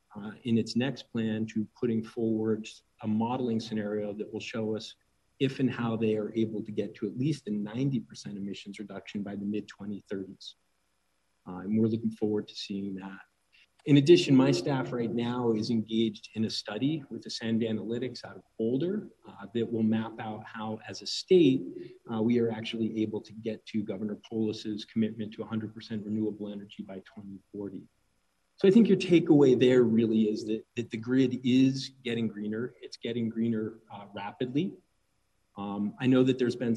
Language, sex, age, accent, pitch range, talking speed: English, male, 40-59, American, 105-120 Hz, 180 wpm